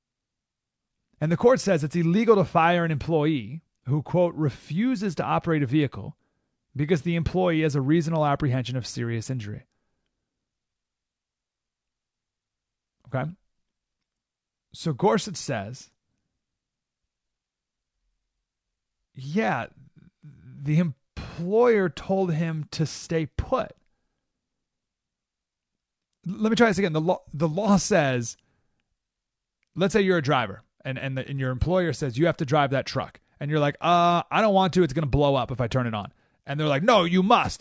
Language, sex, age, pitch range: English, male, 40-59, 135-190 Hz